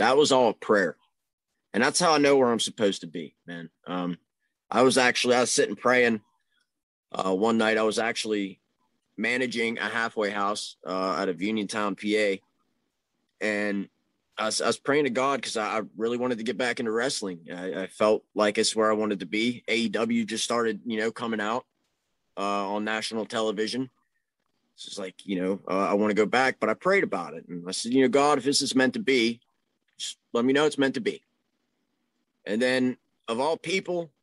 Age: 30-49